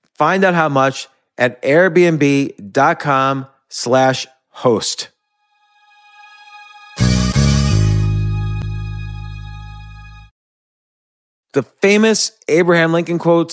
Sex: male